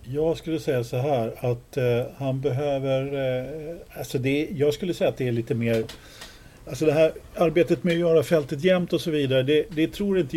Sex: male